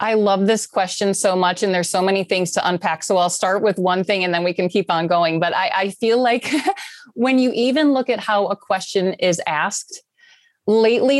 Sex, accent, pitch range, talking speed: female, American, 185-225 Hz, 225 wpm